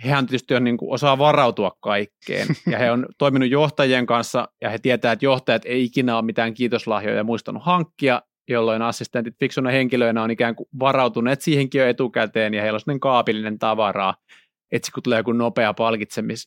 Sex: male